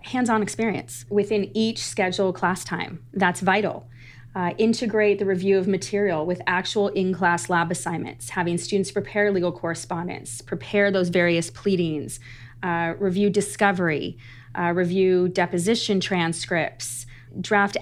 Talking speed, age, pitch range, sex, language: 125 wpm, 30-49, 165-195 Hz, female, English